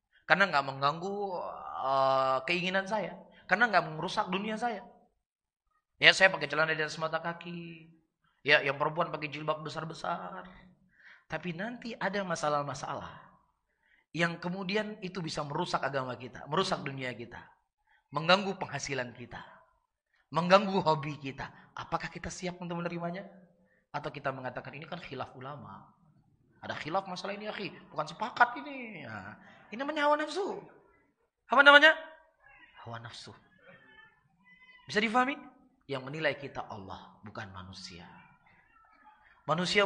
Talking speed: 125 wpm